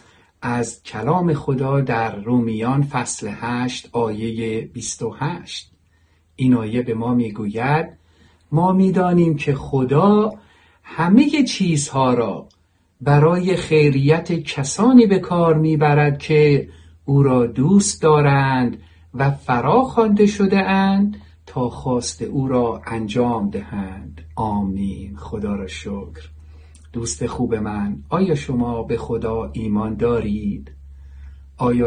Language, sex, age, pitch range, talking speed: Persian, male, 50-69, 115-150 Hz, 105 wpm